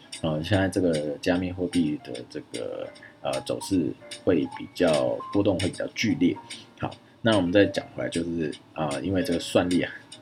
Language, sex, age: Chinese, male, 20-39